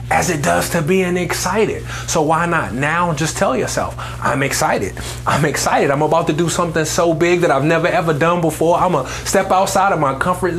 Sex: male